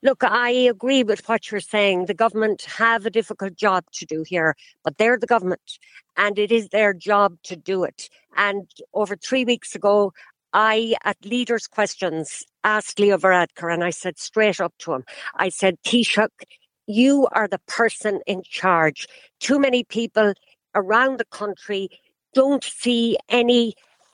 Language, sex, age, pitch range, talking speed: English, female, 60-79, 200-235 Hz, 160 wpm